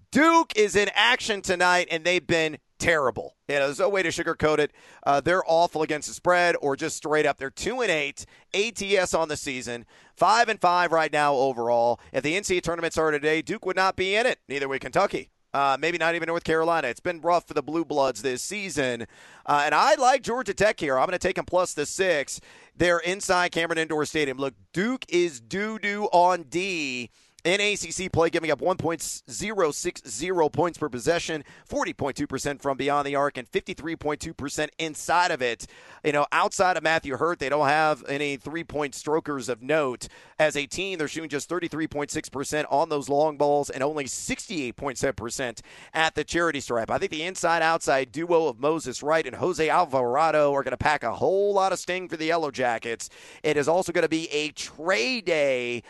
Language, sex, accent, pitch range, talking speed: English, male, American, 140-175 Hz, 195 wpm